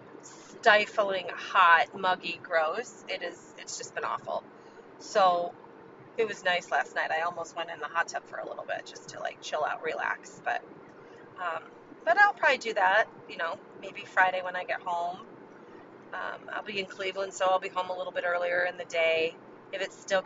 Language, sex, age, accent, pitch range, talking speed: English, female, 30-49, American, 180-225 Hz, 195 wpm